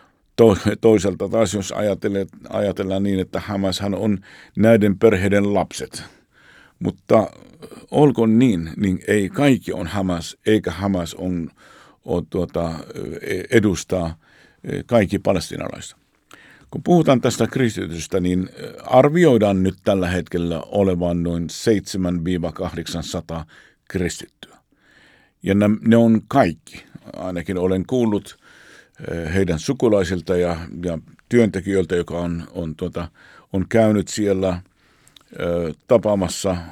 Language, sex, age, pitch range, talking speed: Finnish, male, 50-69, 85-100 Hz, 100 wpm